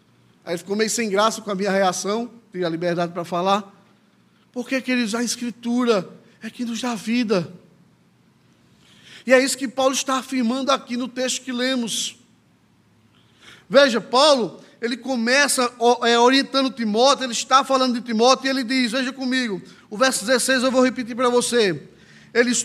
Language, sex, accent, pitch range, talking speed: Portuguese, male, Brazilian, 240-275 Hz, 160 wpm